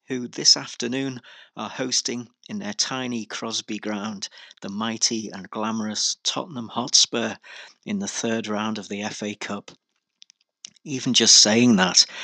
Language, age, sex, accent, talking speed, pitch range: English, 40-59, male, British, 135 wpm, 105-115 Hz